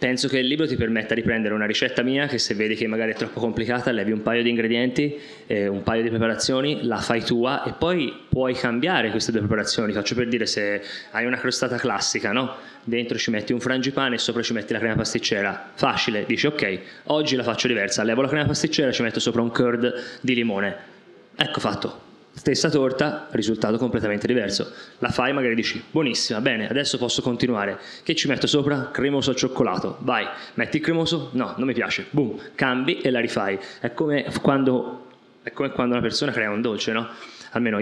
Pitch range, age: 115-140 Hz, 20-39